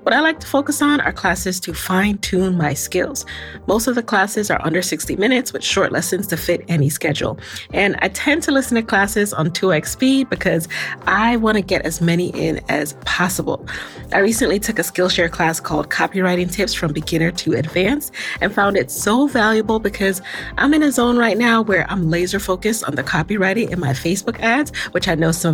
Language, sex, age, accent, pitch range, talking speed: English, female, 30-49, American, 160-220 Hz, 205 wpm